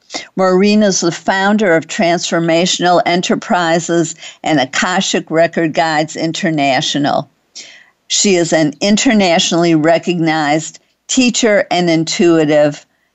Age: 50-69